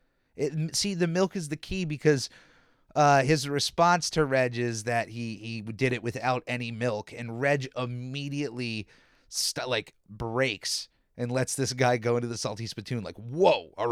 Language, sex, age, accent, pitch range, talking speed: English, male, 30-49, American, 115-155 Hz, 170 wpm